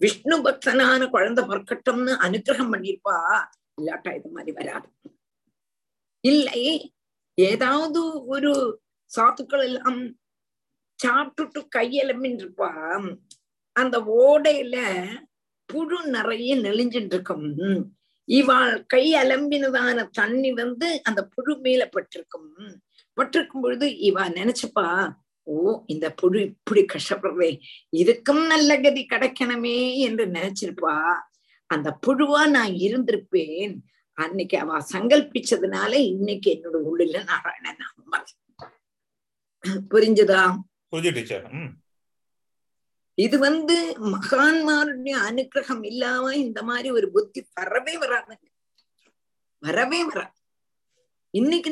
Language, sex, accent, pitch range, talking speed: Tamil, female, native, 205-280 Hz, 80 wpm